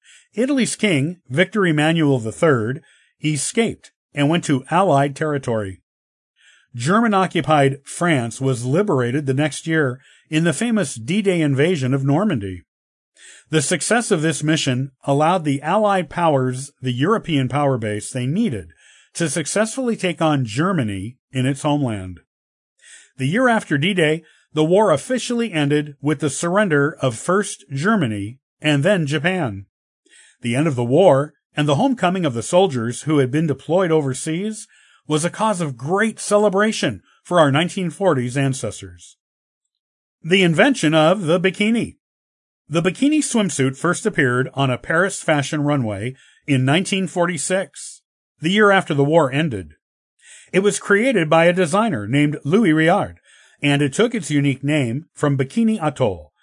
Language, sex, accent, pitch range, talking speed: English, male, American, 135-185 Hz, 140 wpm